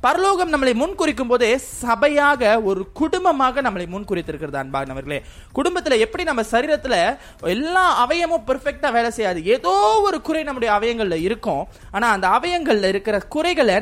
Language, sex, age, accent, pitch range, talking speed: Tamil, male, 20-39, native, 185-295 Hz, 130 wpm